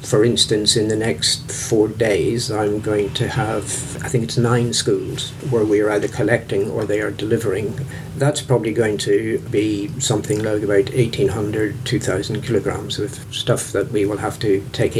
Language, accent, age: English, British, 50-69